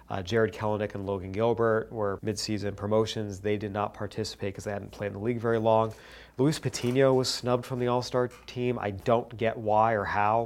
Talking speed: 205 wpm